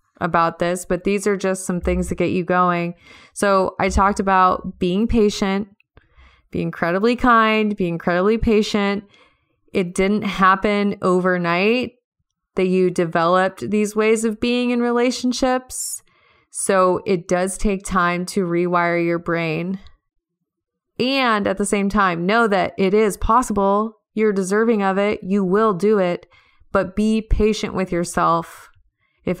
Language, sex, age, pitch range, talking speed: English, female, 20-39, 175-210 Hz, 145 wpm